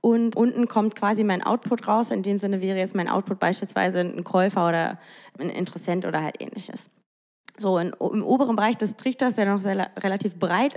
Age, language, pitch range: 20-39, German, 195-225 Hz